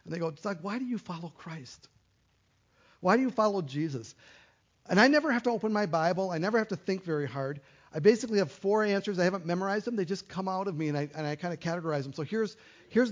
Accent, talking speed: American, 255 wpm